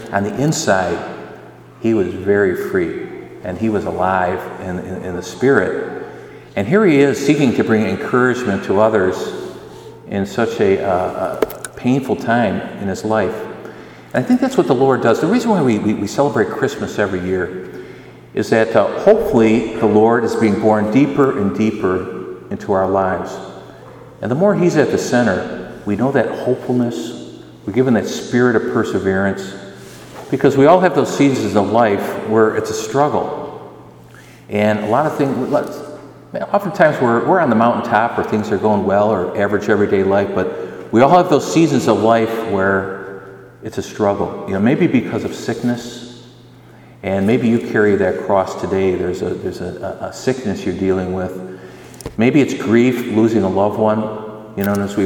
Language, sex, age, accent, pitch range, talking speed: English, male, 50-69, American, 100-130 Hz, 180 wpm